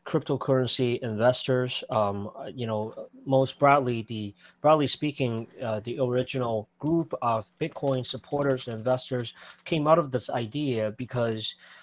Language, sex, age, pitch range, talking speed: English, male, 30-49, 115-135 Hz, 125 wpm